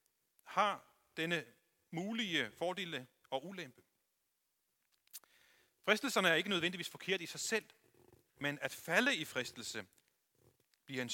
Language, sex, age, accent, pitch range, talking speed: Danish, male, 40-59, native, 135-190 Hz, 115 wpm